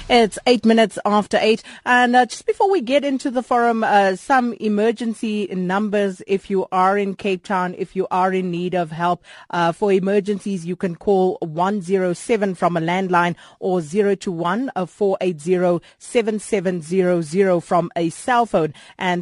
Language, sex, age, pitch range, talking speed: English, female, 30-49, 170-210 Hz, 150 wpm